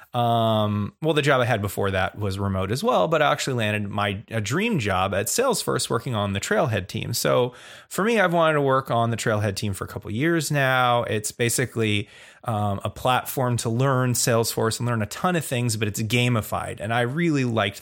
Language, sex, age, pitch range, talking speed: English, male, 30-49, 105-145 Hz, 220 wpm